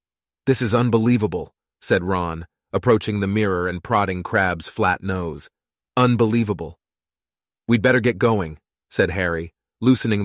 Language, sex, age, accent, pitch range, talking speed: English, male, 30-49, American, 90-125 Hz, 125 wpm